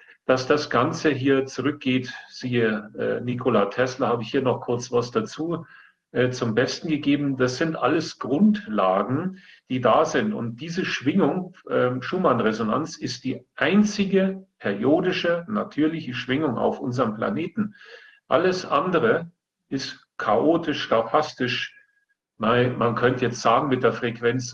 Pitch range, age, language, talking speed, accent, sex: 120-155 Hz, 40-59, German, 120 wpm, German, male